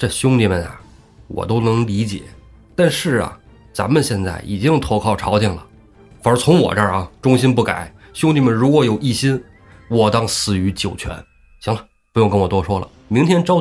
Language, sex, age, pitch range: Chinese, male, 20-39, 95-130 Hz